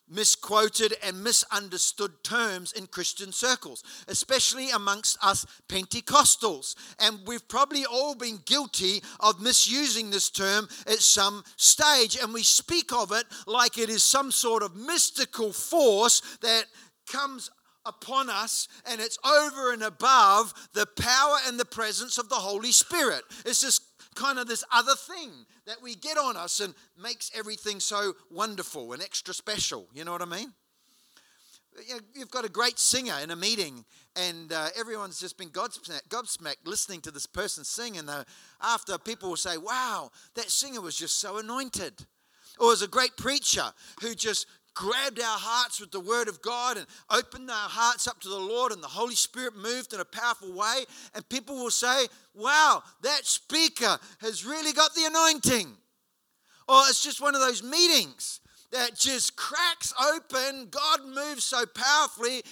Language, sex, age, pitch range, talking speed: English, male, 50-69, 210-265 Hz, 165 wpm